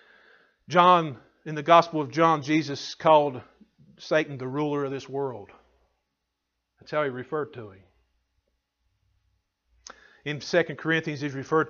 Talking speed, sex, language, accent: 130 wpm, male, English, American